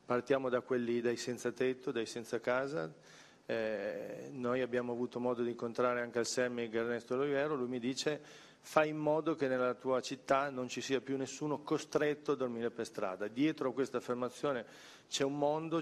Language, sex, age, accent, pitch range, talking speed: Italian, male, 40-59, native, 120-135 Hz, 180 wpm